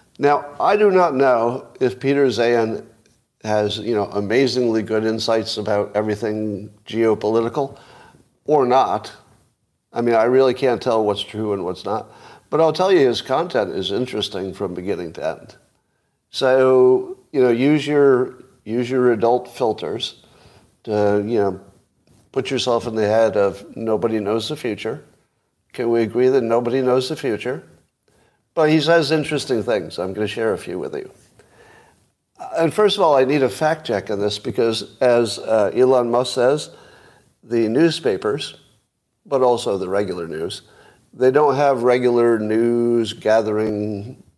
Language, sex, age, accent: English, male, 50-69, American